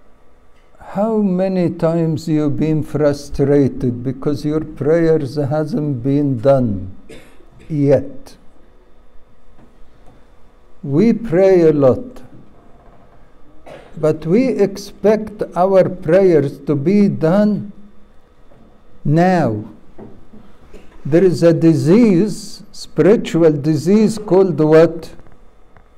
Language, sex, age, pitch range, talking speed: English, male, 60-79, 150-195 Hz, 80 wpm